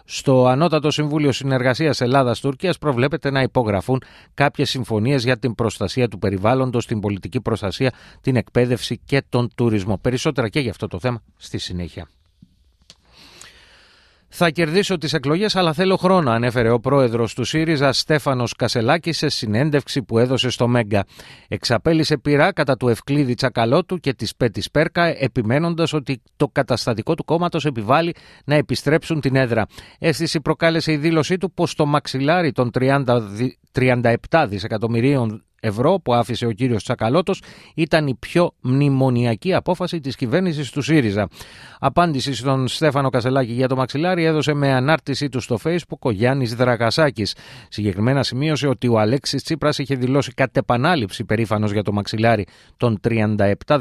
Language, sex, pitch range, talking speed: Greek, male, 115-150 Hz, 145 wpm